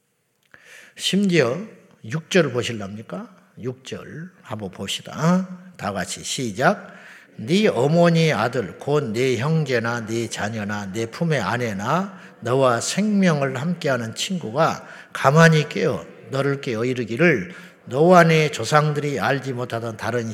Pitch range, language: 130-190 Hz, Korean